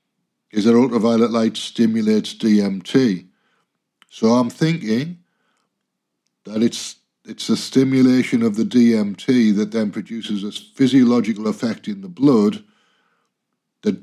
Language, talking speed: English, 115 wpm